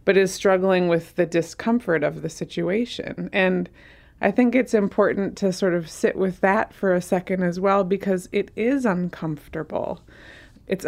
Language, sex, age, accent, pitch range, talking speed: English, female, 20-39, American, 165-195 Hz, 165 wpm